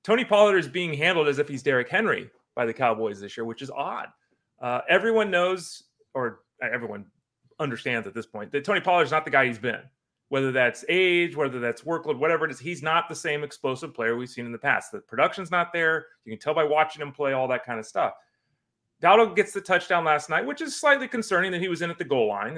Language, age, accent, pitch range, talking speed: English, 30-49, American, 145-190 Hz, 240 wpm